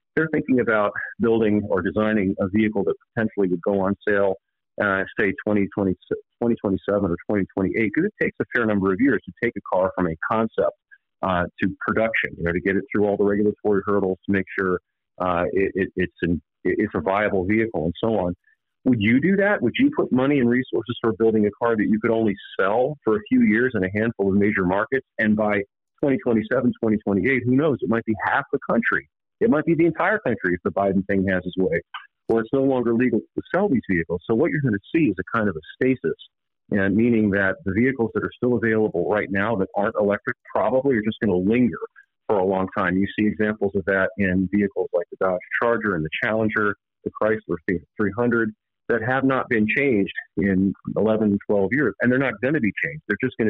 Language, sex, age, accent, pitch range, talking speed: English, male, 40-59, American, 95-120 Hz, 220 wpm